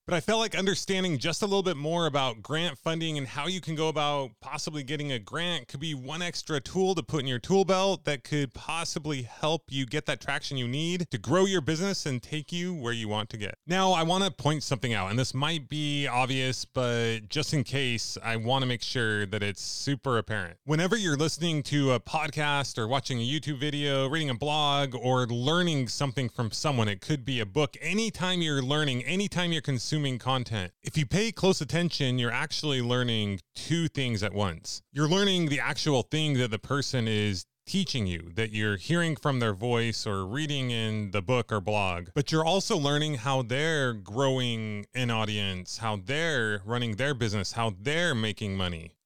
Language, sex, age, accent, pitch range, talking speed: English, male, 20-39, American, 115-155 Hz, 200 wpm